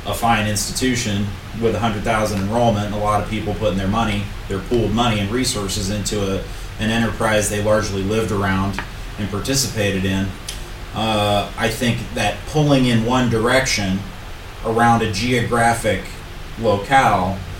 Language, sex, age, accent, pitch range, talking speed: English, male, 30-49, American, 105-120 Hz, 140 wpm